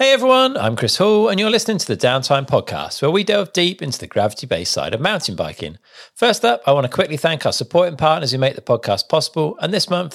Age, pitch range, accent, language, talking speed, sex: 40-59, 130-180 Hz, British, English, 245 wpm, male